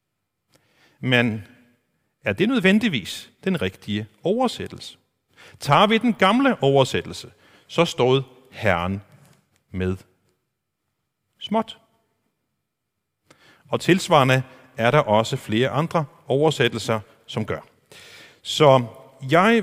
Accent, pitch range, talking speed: native, 115-160 Hz, 90 wpm